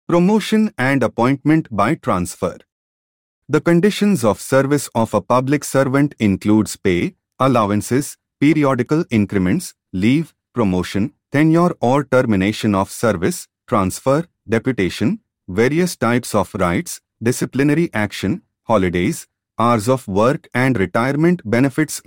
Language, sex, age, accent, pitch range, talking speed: English, male, 30-49, Indian, 100-145 Hz, 110 wpm